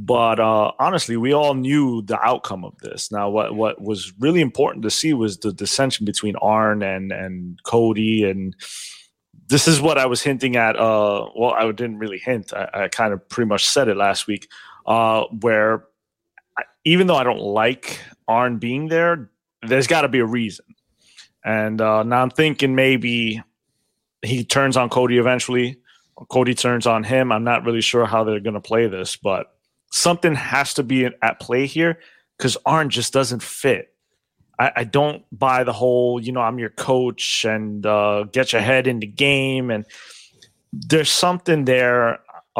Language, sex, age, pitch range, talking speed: English, male, 30-49, 110-135 Hz, 180 wpm